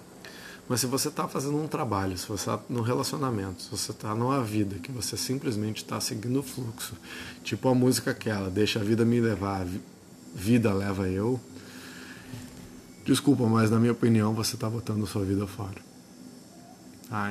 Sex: male